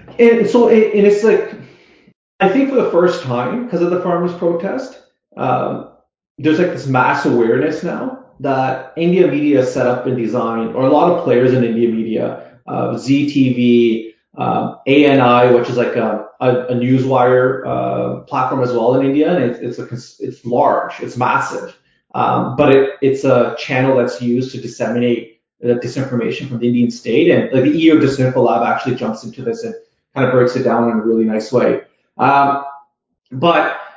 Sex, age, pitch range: male, 30-49, 120-145 Hz